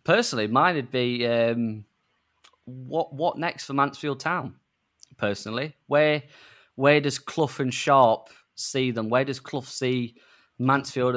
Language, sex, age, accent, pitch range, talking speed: English, male, 20-39, British, 120-140 Hz, 130 wpm